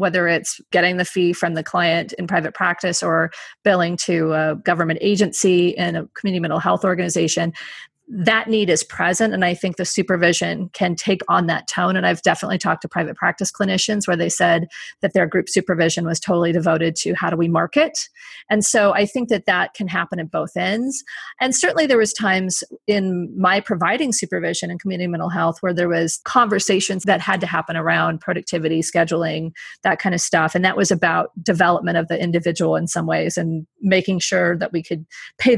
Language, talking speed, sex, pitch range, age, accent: English, 195 wpm, female, 170-205 Hz, 30-49, American